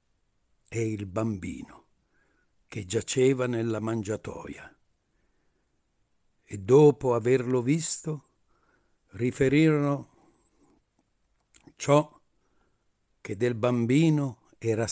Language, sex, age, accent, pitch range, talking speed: Italian, male, 60-79, native, 110-135 Hz, 65 wpm